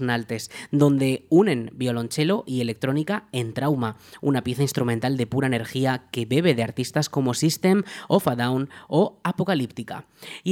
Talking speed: 150 wpm